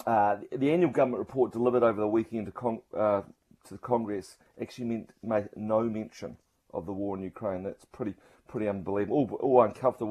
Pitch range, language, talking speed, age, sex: 100-115 Hz, English, 190 wpm, 30-49, male